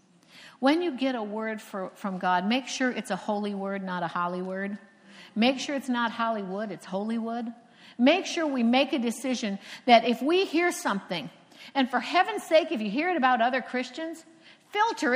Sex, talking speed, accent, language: female, 185 wpm, American, English